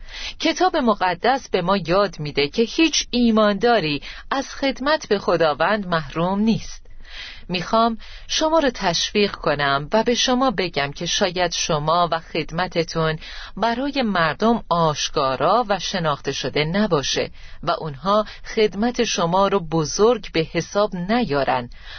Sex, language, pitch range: female, Persian, 160-235 Hz